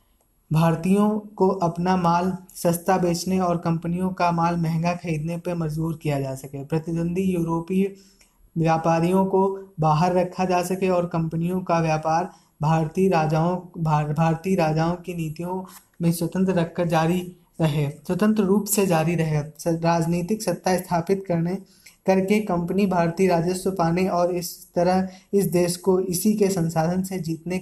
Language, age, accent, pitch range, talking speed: Hindi, 20-39, native, 170-190 Hz, 145 wpm